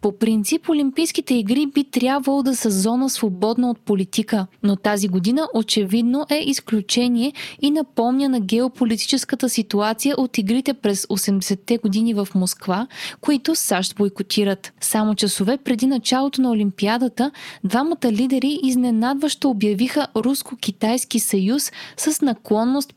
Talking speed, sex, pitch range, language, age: 125 wpm, female, 205-255 Hz, Bulgarian, 20-39